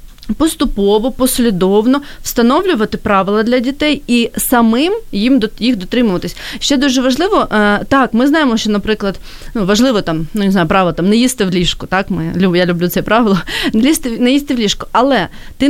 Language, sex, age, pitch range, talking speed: Ukrainian, female, 30-49, 215-270 Hz, 180 wpm